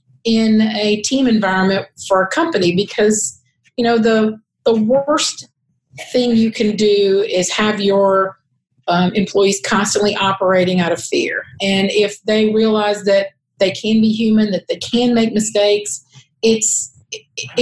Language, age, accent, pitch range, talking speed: English, 40-59, American, 190-220 Hz, 145 wpm